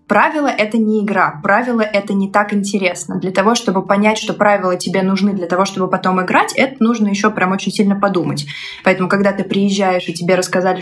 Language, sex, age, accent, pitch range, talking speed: Russian, female, 20-39, native, 190-245 Hz, 200 wpm